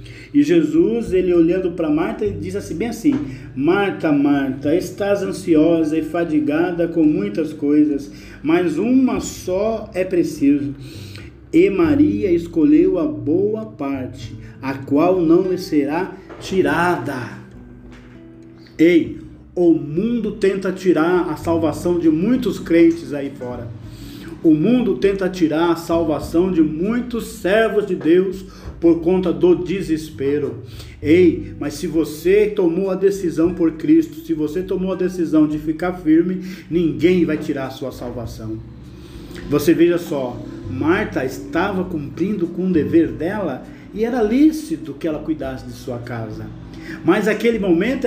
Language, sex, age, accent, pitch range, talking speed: Portuguese, male, 50-69, Brazilian, 155-215 Hz, 135 wpm